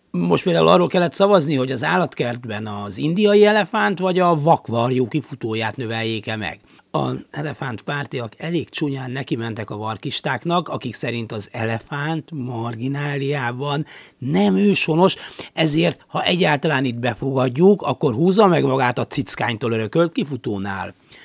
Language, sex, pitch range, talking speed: Hungarian, male, 115-160 Hz, 125 wpm